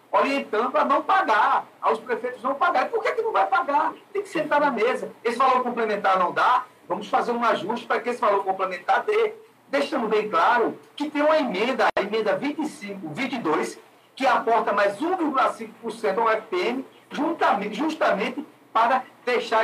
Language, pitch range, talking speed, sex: Portuguese, 215-290 Hz, 170 wpm, male